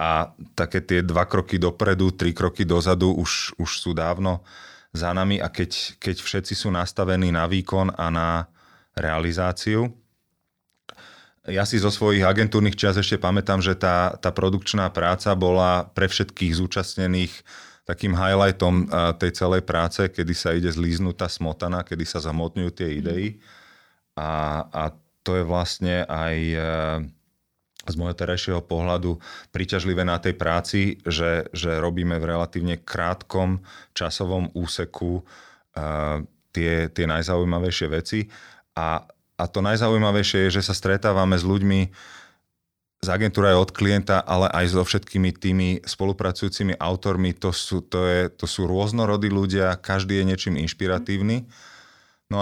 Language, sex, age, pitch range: Slovak, male, 30-49, 85-100 Hz